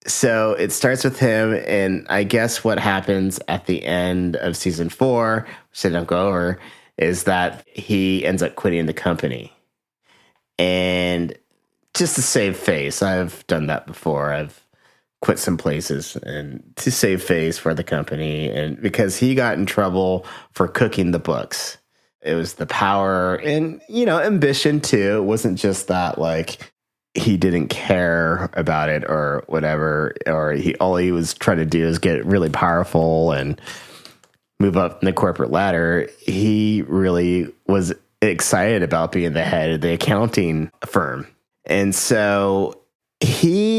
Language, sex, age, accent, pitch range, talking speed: English, male, 30-49, American, 85-110 Hz, 155 wpm